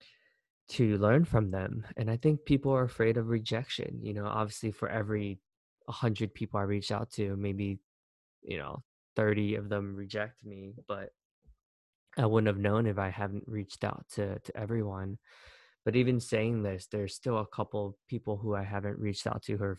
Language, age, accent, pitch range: English, 20-39, American, 100-120 Hz